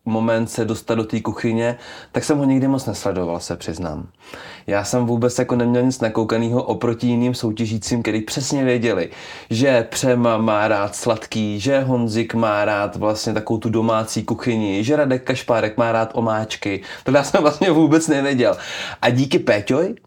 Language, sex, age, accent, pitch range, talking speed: Czech, male, 20-39, native, 110-125 Hz, 165 wpm